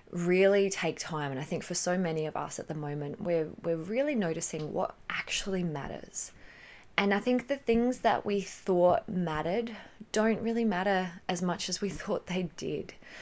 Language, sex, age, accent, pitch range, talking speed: English, female, 20-39, Australian, 155-195 Hz, 180 wpm